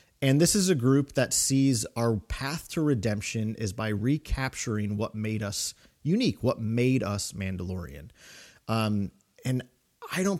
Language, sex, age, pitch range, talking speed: English, male, 30-49, 105-135 Hz, 150 wpm